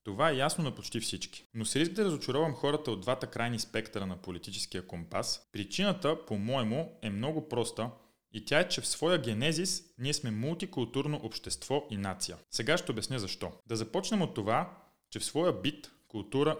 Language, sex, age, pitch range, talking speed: Bulgarian, male, 30-49, 105-150 Hz, 180 wpm